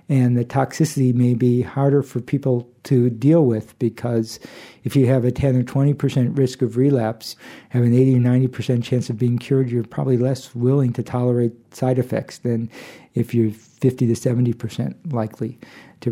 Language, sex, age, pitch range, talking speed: English, male, 50-69, 120-135 Hz, 175 wpm